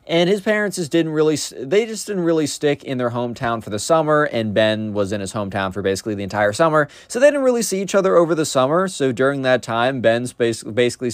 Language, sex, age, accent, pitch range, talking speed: English, male, 20-39, American, 105-165 Hz, 235 wpm